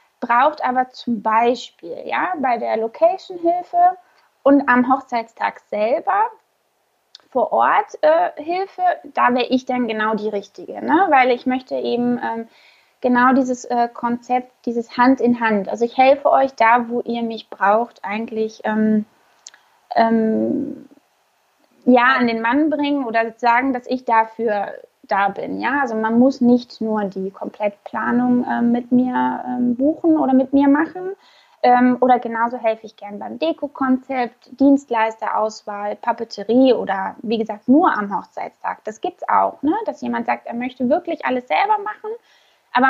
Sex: female